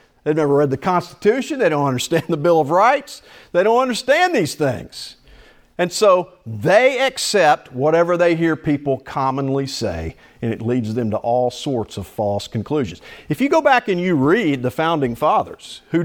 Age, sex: 50-69, male